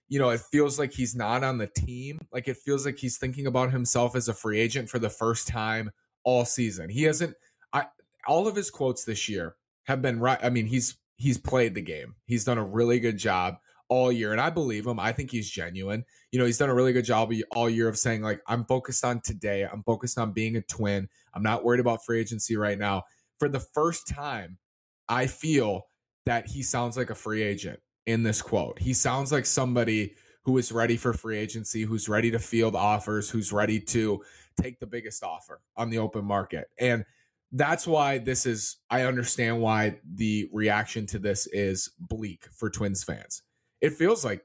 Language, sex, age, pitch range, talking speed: English, male, 20-39, 110-130 Hz, 210 wpm